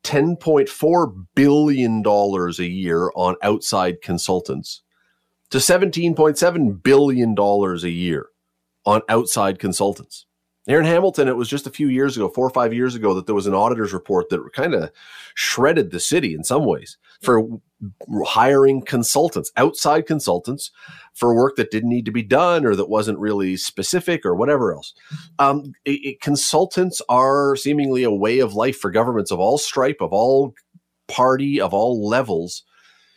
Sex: male